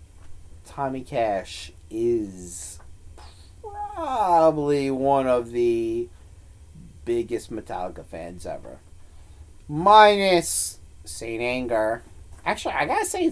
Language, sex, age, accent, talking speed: English, male, 30-49, American, 80 wpm